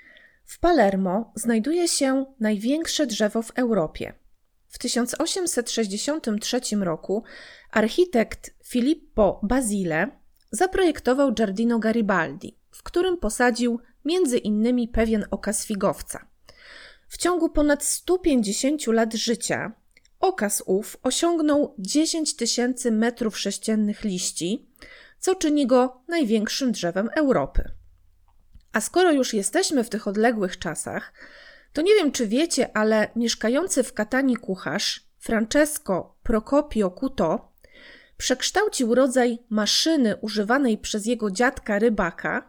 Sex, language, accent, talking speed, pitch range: female, Polish, native, 105 wpm, 210-280 Hz